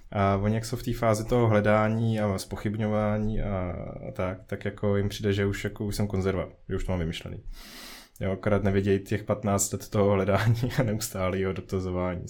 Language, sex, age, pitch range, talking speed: Slovak, male, 20-39, 95-110 Hz, 190 wpm